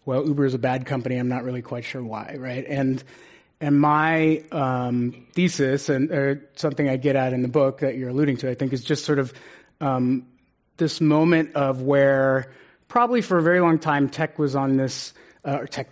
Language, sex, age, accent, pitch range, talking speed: English, male, 30-49, American, 135-155 Hz, 205 wpm